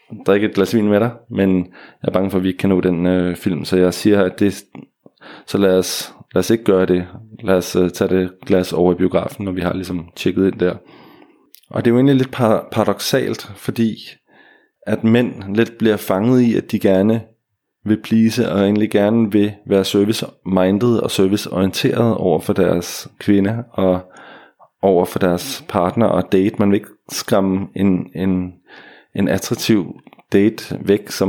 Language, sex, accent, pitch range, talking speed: Danish, male, native, 95-115 Hz, 190 wpm